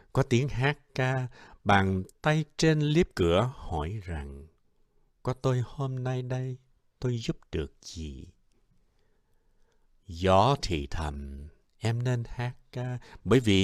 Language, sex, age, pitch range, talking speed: Vietnamese, male, 60-79, 80-130 Hz, 130 wpm